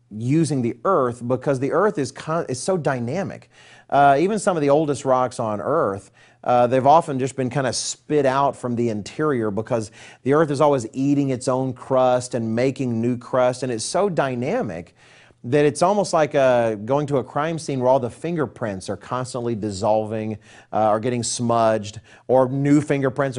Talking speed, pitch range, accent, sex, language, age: 185 wpm, 120-145 Hz, American, male, English, 40-59